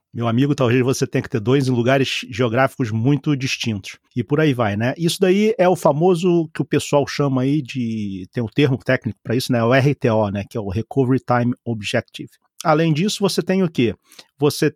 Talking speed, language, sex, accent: 215 wpm, Portuguese, male, Brazilian